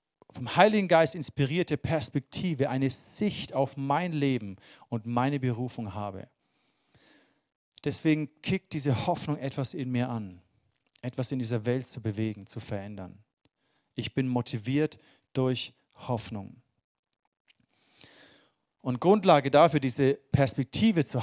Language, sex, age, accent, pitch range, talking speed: German, male, 40-59, German, 115-145 Hz, 115 wpm